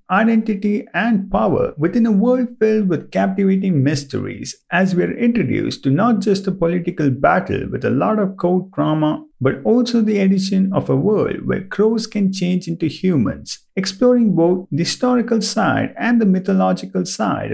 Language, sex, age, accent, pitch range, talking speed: English, male, 50-69, Indian, 160-215 Hz, 165 wpm